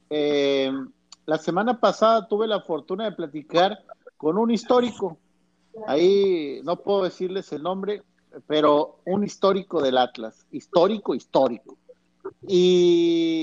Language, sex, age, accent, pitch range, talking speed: Spanish, male, 50-69, Mexican, 160-210 Hz, 115 wpm